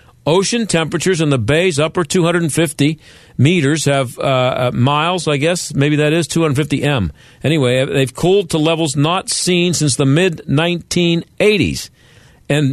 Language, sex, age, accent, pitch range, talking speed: English, male, 50-69, American, 120-160 Hz, 135 wpm